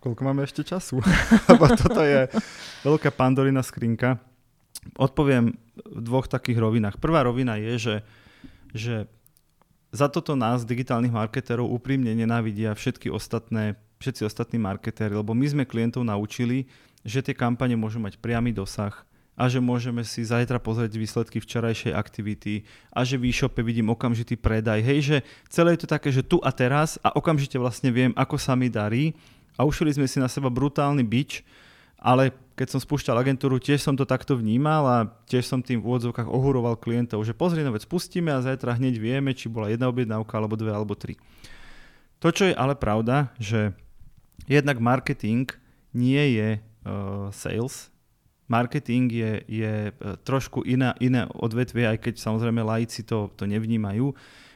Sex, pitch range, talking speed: male, 115-135 Hz, 155 wpm